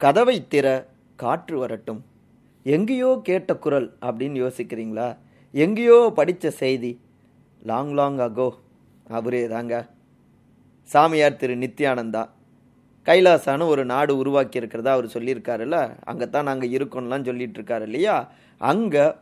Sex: male